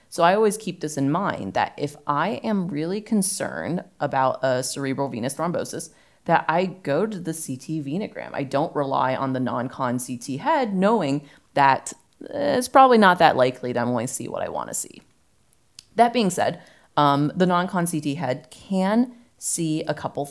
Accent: American